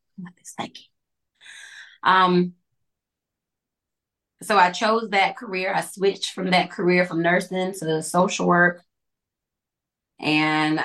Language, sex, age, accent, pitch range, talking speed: English, female, 20-39, American, 165-195 Hz, 110 wpm